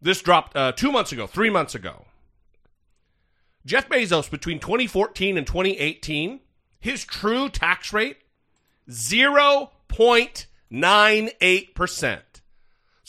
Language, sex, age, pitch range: English, male, 40-59, 175-265 Hz